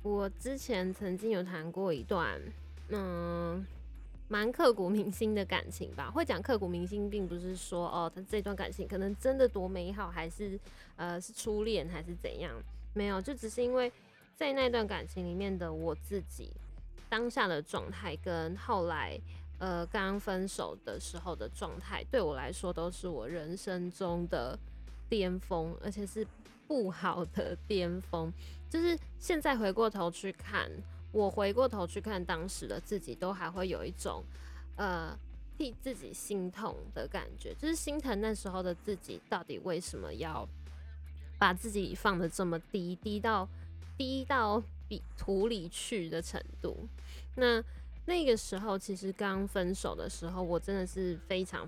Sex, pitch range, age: female, 160-205 Hz, 10-29